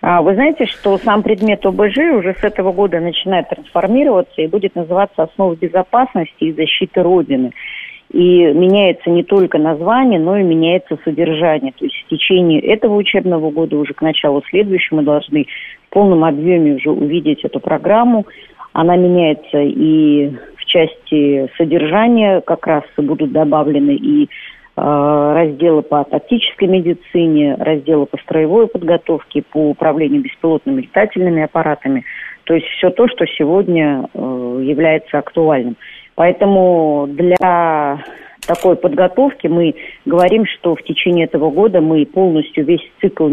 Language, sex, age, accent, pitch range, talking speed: Russian, female, 40-59, native, 150-190 Hz, 135 wpm